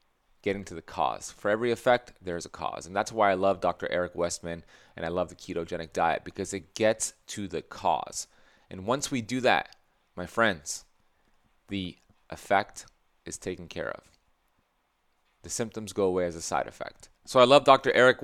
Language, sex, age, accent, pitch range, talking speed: English, male, 30-49, American, 100-120 Hz, 185 wpm